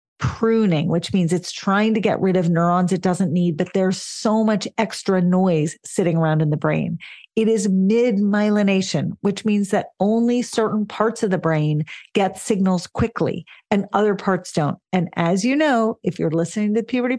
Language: English